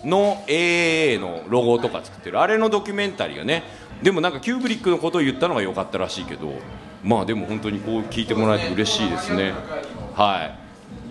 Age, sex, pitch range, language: 40-59, male, 120-180 Hz, Japanese